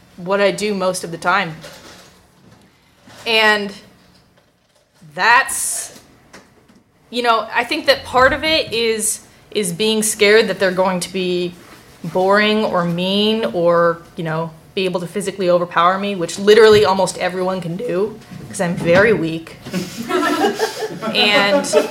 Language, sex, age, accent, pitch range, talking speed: English, female, 20-39, American, 190-235 Hz, 135 wpm